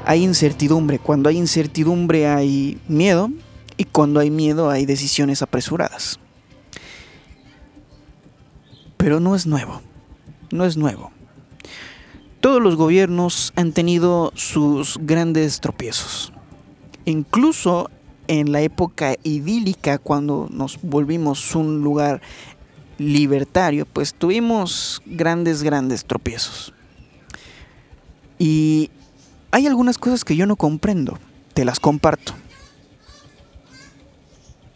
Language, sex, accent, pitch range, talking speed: Spanish, male, Mexican, 140-175 Hz, 95 wpm